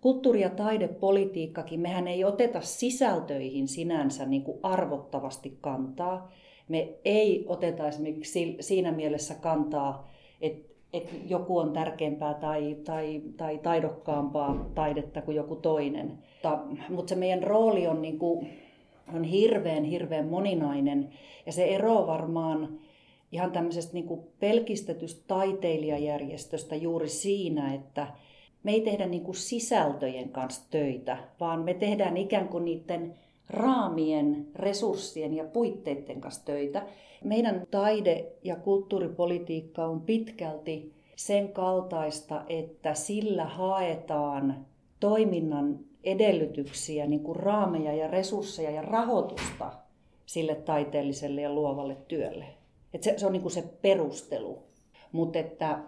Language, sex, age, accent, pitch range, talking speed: Finnish, female, 40-59, native, 150-190 Hz, 105 wpm